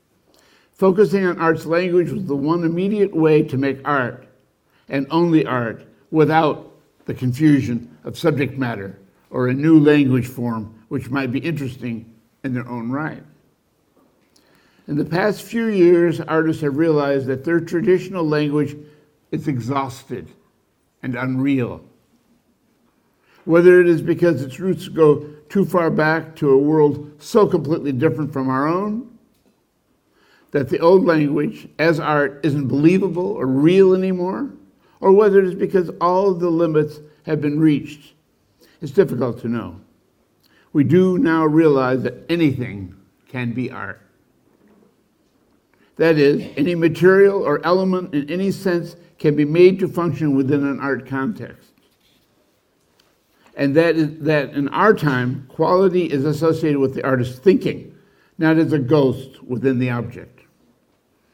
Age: 60-79